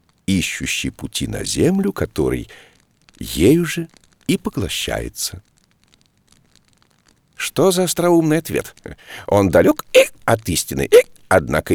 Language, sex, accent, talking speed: Russian, male, native, 90 wpm